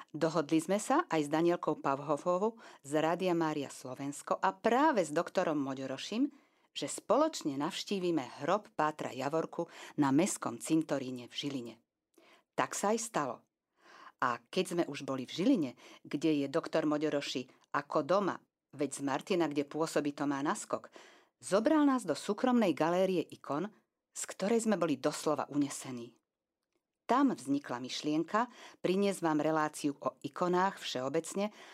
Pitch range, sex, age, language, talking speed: 145-205 Hz, female, 50-69, Slovak, 140 wpm